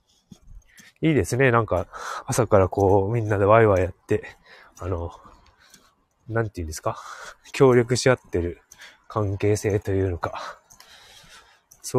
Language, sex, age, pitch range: Japanese, male, 20-39, 100-125 Hz